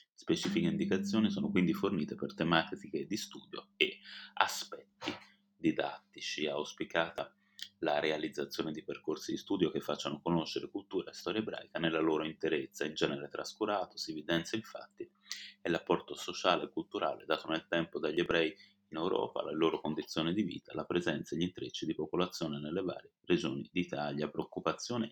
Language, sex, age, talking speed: Italian, male, 30-49, 155 wpm